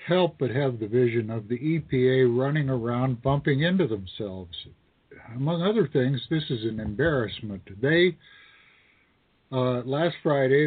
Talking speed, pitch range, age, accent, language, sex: 135 wpm, 125-160 Hz, 60-79, American, English, male